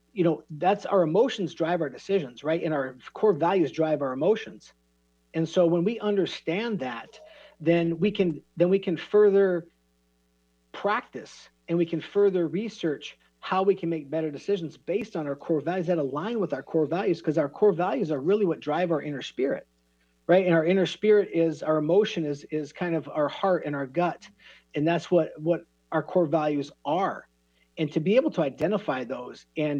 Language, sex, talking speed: English, male, 195 wpm